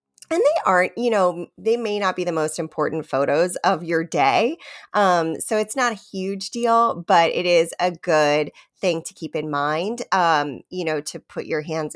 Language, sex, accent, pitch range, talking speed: English, female, American, 155-225 Hz, 200 wpm